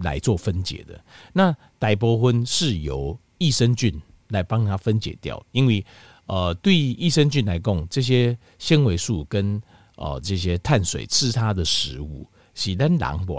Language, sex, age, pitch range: Chinese, male, 50-69, 90-130 Hz